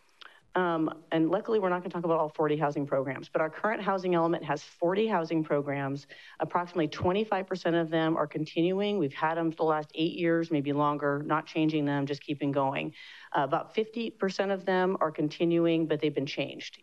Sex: female